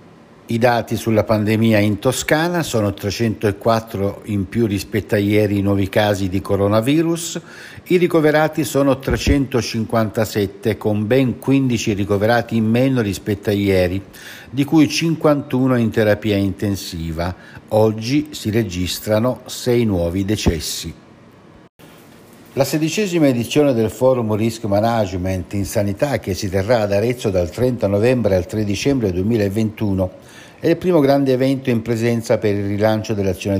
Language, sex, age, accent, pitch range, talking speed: Italian, male, 60-79, native, 100-130 Hz, 135 wpm